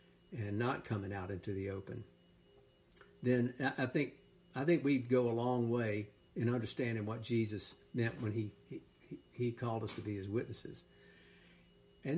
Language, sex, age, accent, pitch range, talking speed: English, male, 60-79, American, 105-130 Hz, 165 wpm